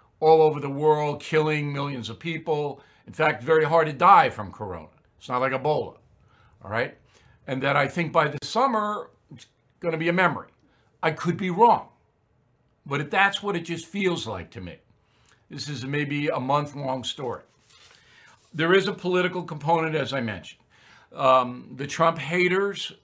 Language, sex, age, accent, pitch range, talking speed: English, male, 60-79, American, 115-155 Hz, 175 wpm